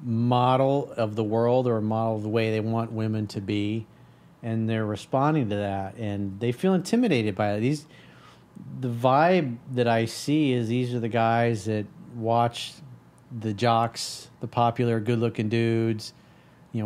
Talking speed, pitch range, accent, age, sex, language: 165 wpm, 115-130 Hz, American, 40-59, male, English